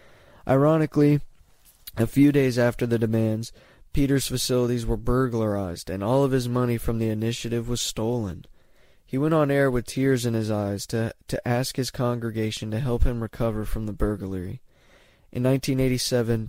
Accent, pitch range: American, 110-130 Hz